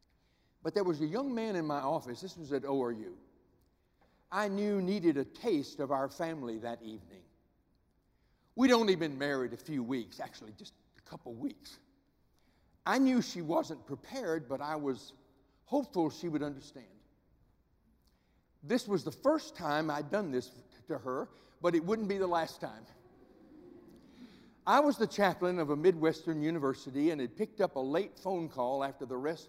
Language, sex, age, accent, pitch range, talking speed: English, male, 60-79, American, 135-200 Hz, 170 wpm